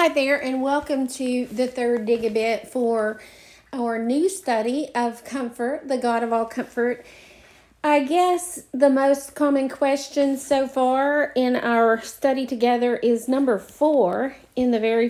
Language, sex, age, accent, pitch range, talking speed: English, female, 40-59, American, 220-260 Hz, 155 wpm